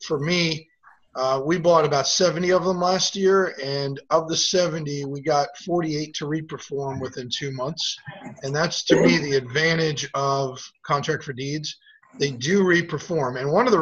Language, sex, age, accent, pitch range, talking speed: English, male, 30-49, American, 140-175 Hz, 175 wpm